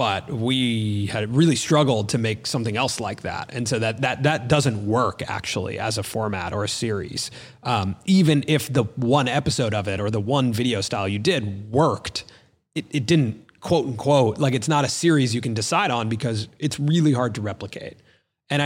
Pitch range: 110-140 Hz